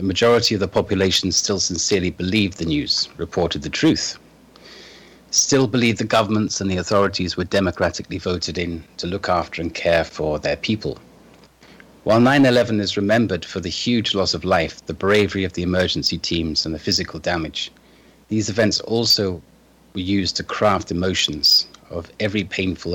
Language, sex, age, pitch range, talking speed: English, male, 30-49, 85-105 Hz, 165 wpm